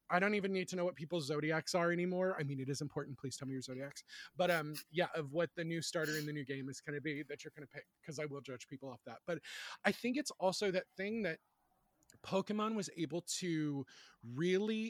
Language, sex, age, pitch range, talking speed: English, male, 20-39, 145-180 Hz, 250 wpm